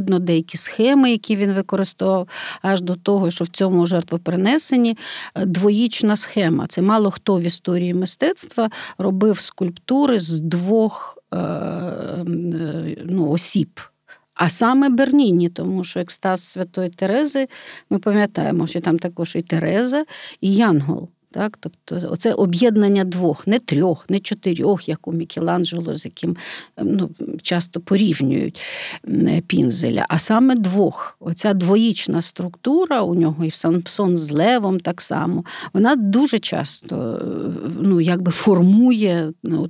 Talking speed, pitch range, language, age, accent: 125 wpm, 175-220 Hz, Ukrainian, 50-69, native